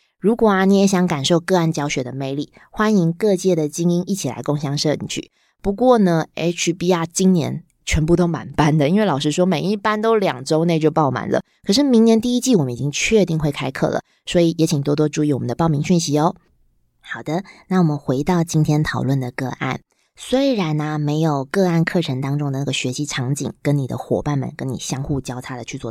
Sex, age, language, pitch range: female, 20-39, Chinese, 145-190 Hz